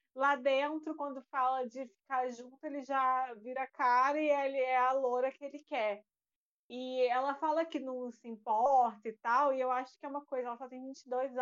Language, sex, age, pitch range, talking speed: Portuguese, female, 20-39, 250-295 Hz, 205 wpm